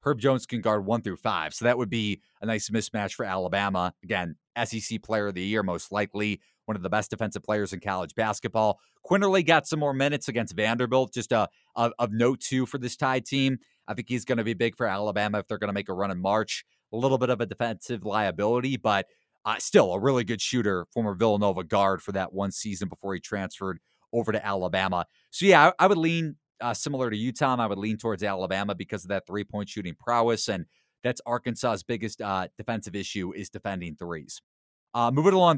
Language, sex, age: English, male, 30-49